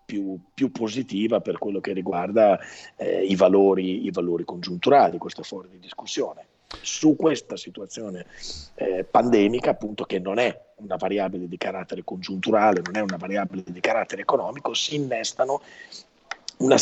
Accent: native